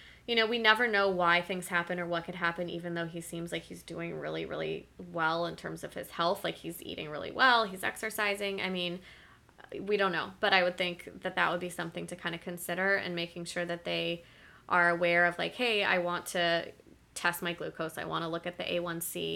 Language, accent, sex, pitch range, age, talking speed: English, American, female, 170-195 Hz, 20-39, 235 wpm